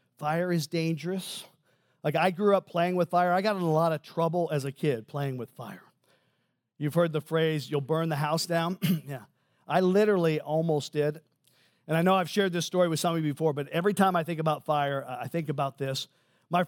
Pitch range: 150-180 Hz